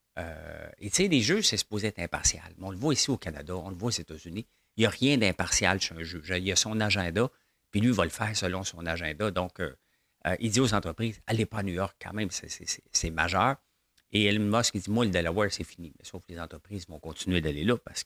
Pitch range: 85-110 Hz